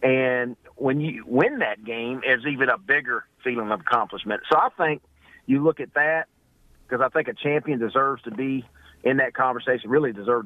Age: 50-69